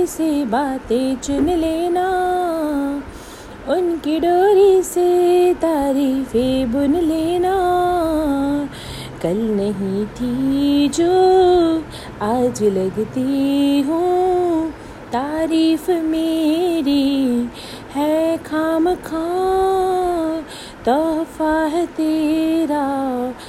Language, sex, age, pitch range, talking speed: Hindi, female, 30-49, 285-360 Hz, 60 wpm